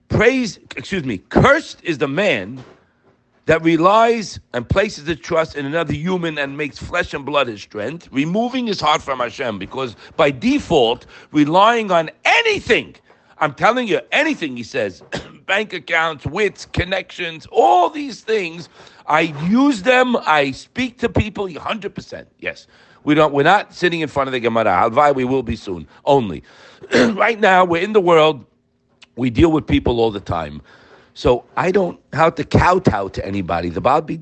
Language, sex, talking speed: English, male, 165 wpm